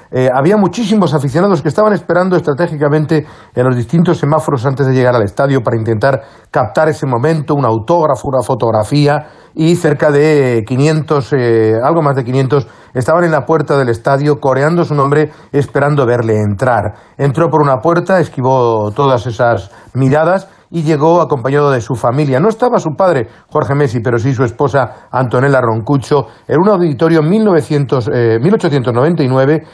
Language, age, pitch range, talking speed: Spanish, 40-59, 130-165 Hz, 160 wpm